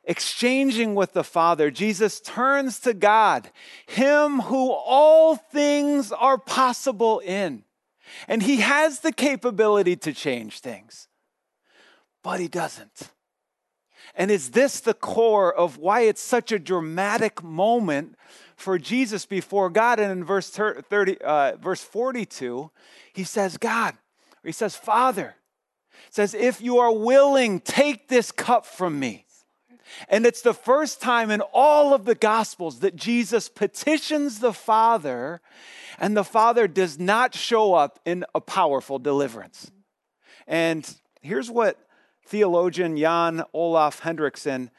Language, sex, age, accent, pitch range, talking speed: English, male, 40-59, American, 180-245 Hz, 135 wpm